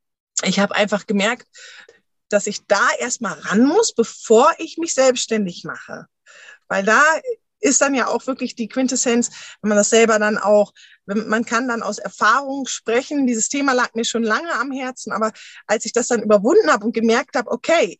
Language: German